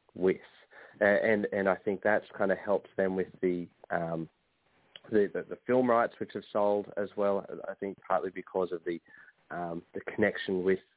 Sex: male